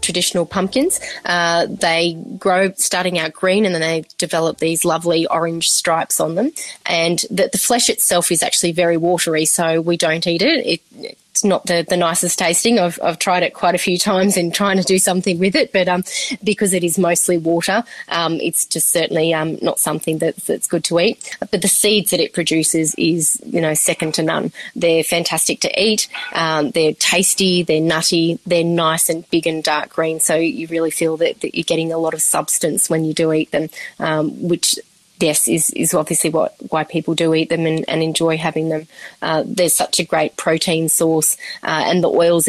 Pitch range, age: 160-180 Hz, 20-39